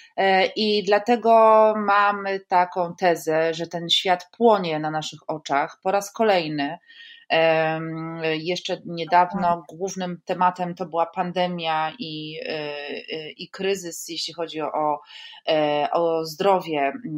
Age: 30-49